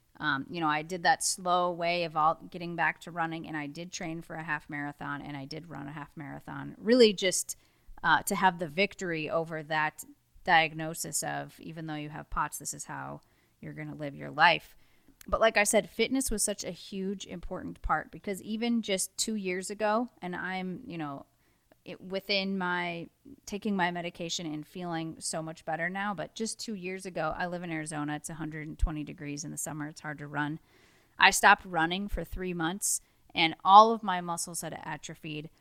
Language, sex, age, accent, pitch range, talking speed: English, female, 30-49, American, 155-190 Hz, 200 wpm